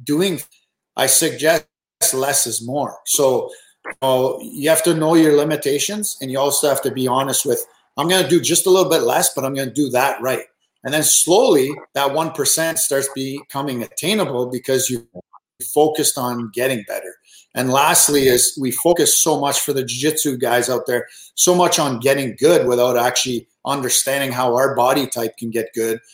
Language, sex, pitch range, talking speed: English, male, 125-155 Hz, 185 wpm